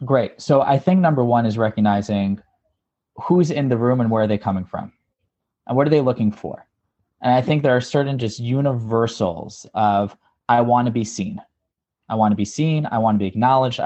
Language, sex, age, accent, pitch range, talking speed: English, male, 20-39, American, 105-130 Hz, 210 wpm